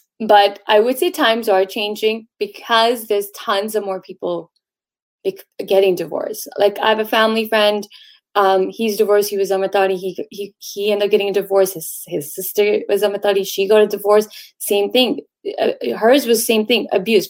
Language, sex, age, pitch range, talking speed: Punjabi, female, 20-39, 200-240 Hz, 175 wpm